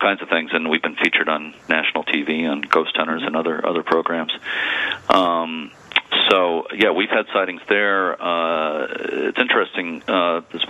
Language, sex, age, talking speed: English, male, 40-59, 165 wpm